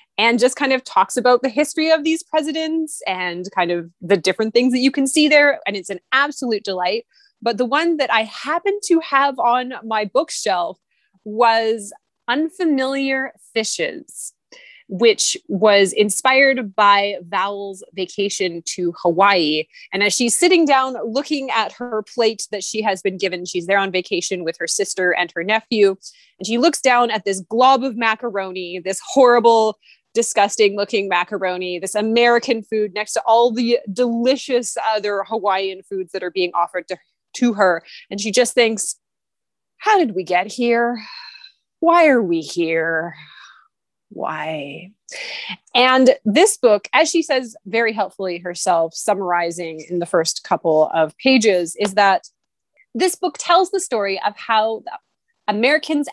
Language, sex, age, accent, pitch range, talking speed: English, female, 20-39, American, 190-265 Hz, 155 wpm